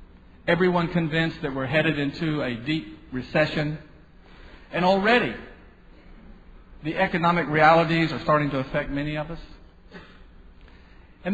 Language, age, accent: English, 50-69, American